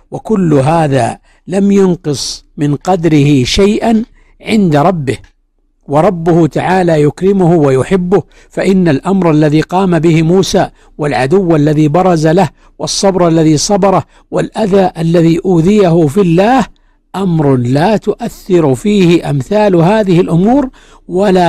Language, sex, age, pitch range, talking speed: Arabic, male, 60-79, 150-195 Hz, 110 wpm